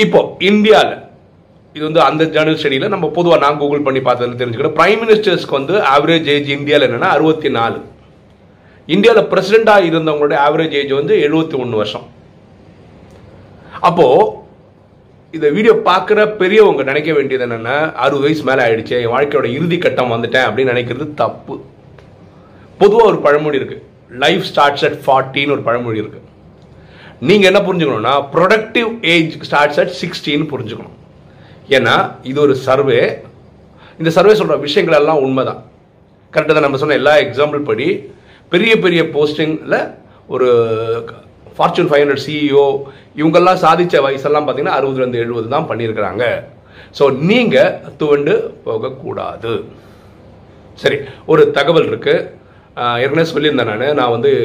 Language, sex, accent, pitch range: Tamil, male, native, 130-185 Hz